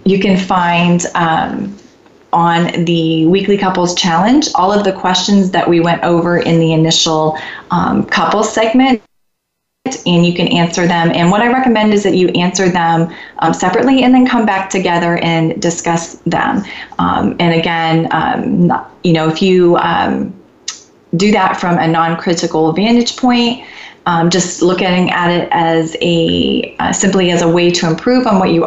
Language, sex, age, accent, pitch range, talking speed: English, female, 30-49, American, 165-195 Hz, 170 wpm